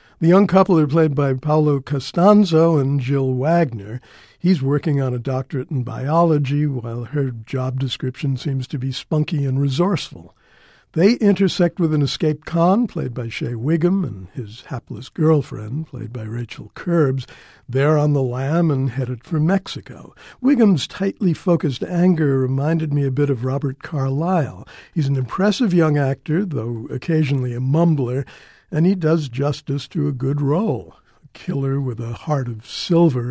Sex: male